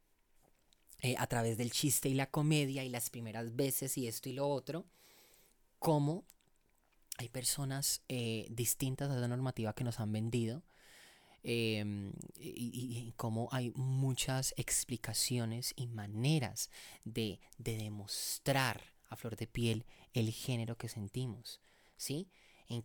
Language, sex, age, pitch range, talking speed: Spanish, male, 30-49, 110-135 Hz, 135 wpm